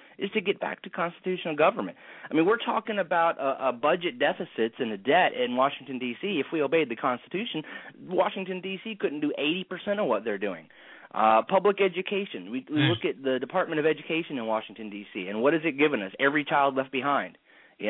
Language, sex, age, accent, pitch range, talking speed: English, male, 30-49, American, 135-190 Hz, 205 wpm